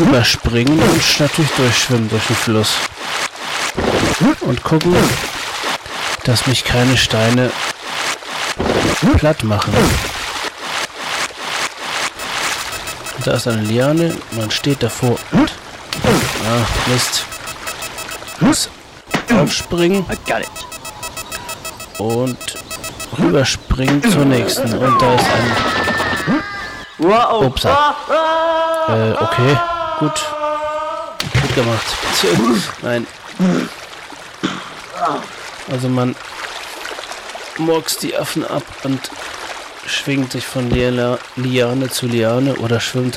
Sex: male